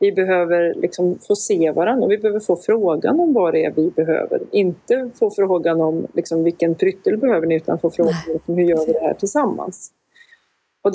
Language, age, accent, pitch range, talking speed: Swedish, 30-49, native, 165-205 Hz, 205 wpm